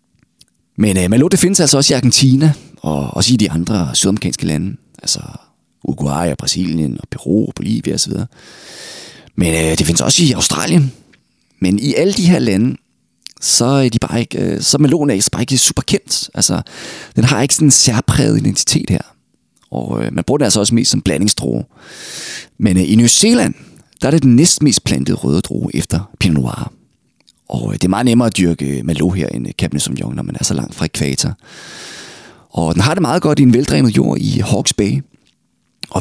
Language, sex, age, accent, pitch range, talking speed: Danish, male, 30-49, native, 90-135 Hz, 190 wpm